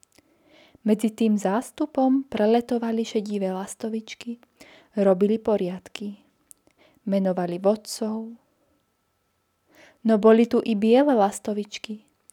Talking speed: 80 wpm